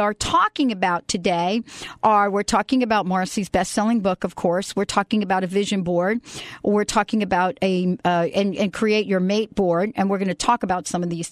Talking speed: 205 wpm